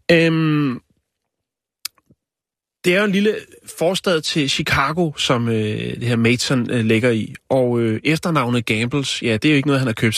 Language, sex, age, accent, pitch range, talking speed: Danish, male, 30-49, native, 120-160 Hz, 170 wpm